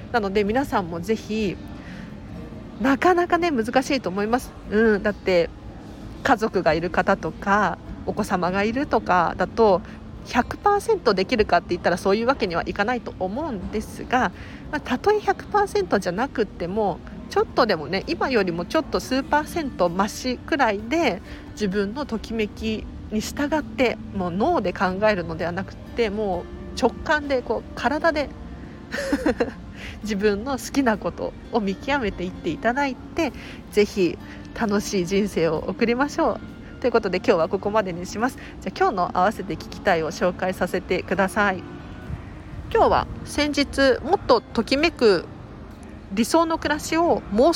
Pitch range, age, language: 195-275 Hz, 40-59, Japanese